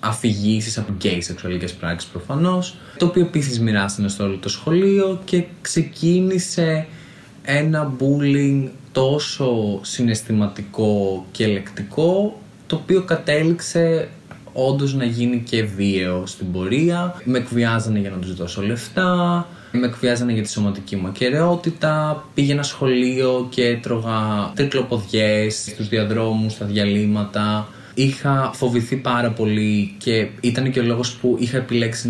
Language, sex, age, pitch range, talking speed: Greek, male, 20-39, 110-145 Hz, 125 wpm